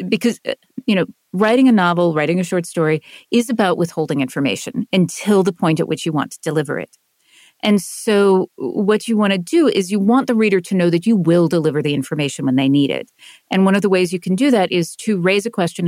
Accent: American